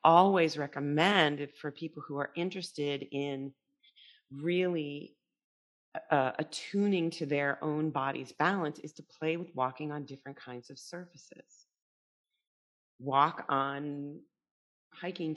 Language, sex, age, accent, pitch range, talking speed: English, female, 40-59, American, 140-170 Hz, 115 wpm